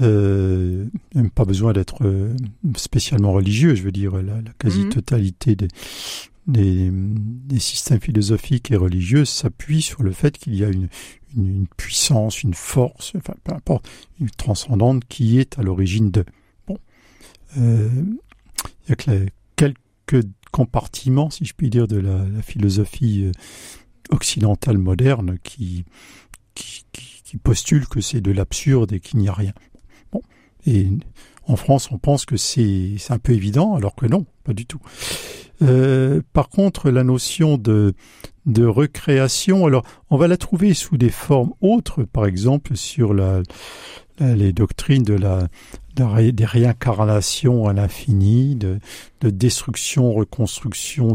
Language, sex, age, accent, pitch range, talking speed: French, male, 50-69, French, 100-135 Hz, 150 wpm